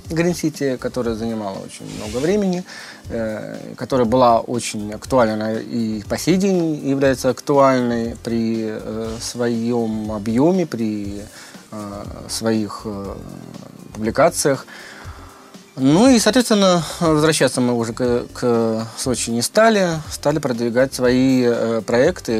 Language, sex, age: Russian, male, 20-39